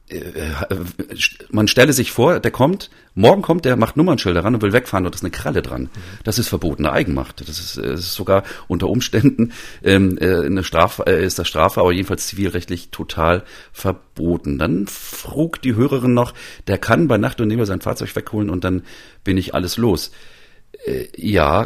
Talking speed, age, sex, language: 175 wpm, 40-59, male, German